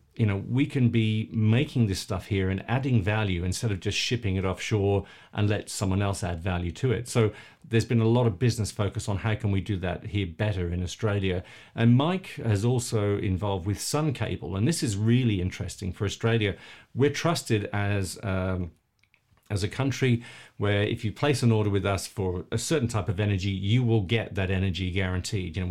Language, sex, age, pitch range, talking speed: English, male, 50-69, 95-115 Hz, 205 wpm